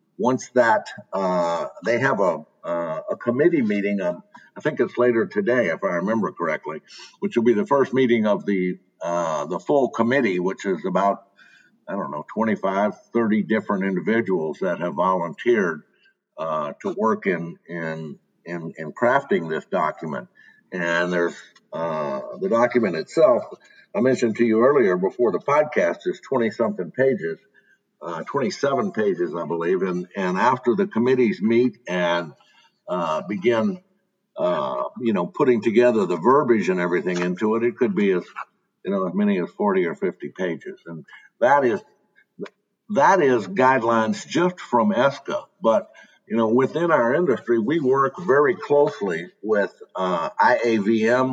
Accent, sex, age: American, male, 60-79